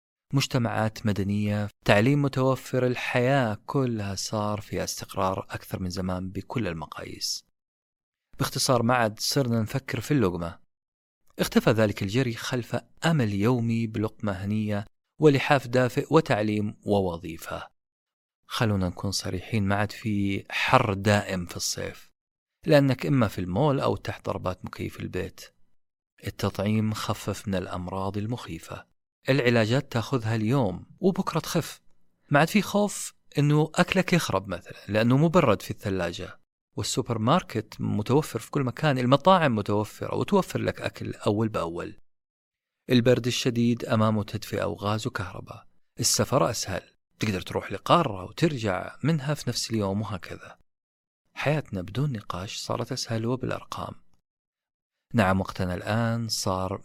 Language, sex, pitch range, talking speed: Arabic, male, 100-135 Hz, 120 wpm